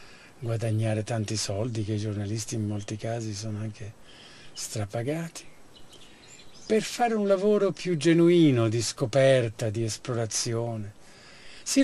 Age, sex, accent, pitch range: 50-69, male, native, 110-150 Hz